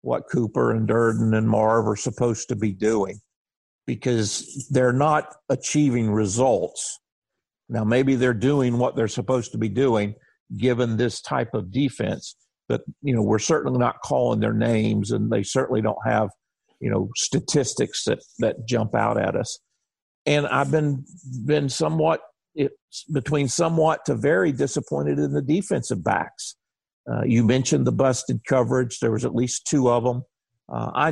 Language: English